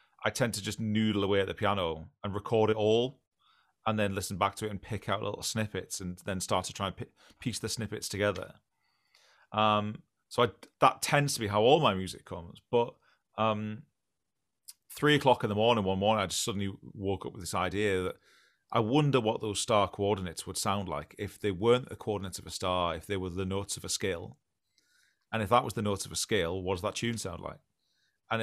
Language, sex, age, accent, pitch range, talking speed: English, male, 30-49, British, 95-110 Hz, 220 wpm